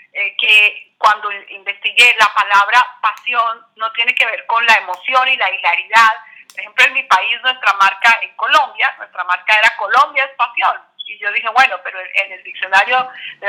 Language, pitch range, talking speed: Spanish, 210-270 Hz, 180 wpm